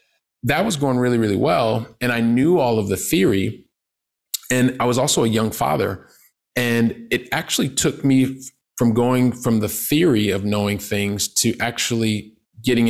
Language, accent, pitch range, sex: English, American, 100-120 Hz, male